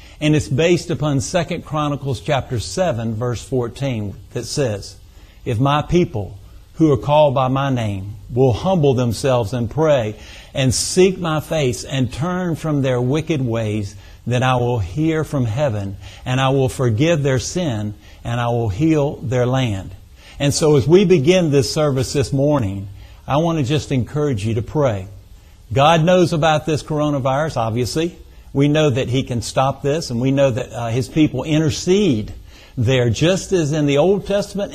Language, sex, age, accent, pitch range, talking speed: English, male, 50-69, American, 115-155 Hz, 170 wpm